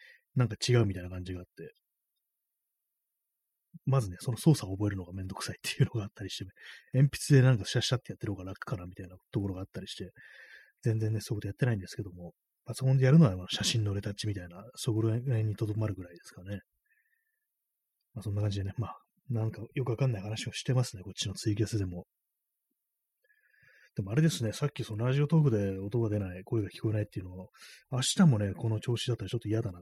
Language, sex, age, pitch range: Japanese, male, 30-49, 100-130 Hz